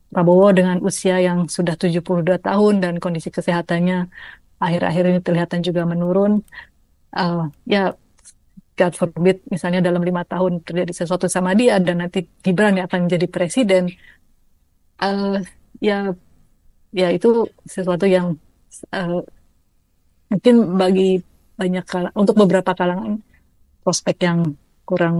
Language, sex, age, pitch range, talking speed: Malay, female, 30-49, 180-200 Hz, 120 wpm